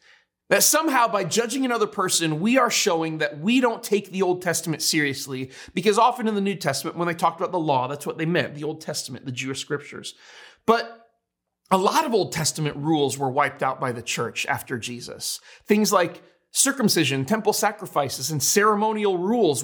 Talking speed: 190 wpm